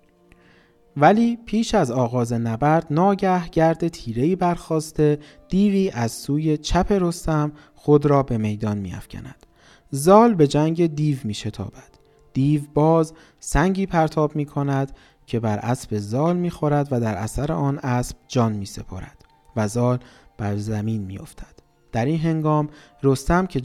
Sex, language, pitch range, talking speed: male, Persian, 115-155 Hz, 140 wpm